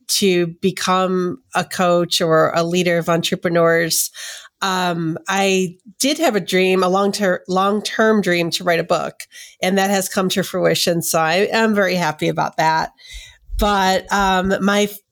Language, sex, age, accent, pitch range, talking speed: English, female, 40-59, American, 170-205 Hz, 150 wpm